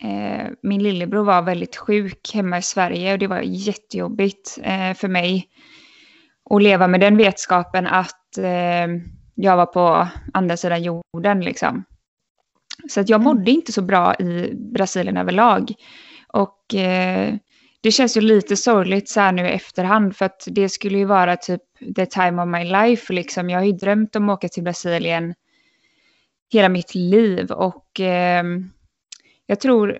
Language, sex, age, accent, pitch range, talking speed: Swedish, female, 20-39, native, 180-210 Hz, 150 wpm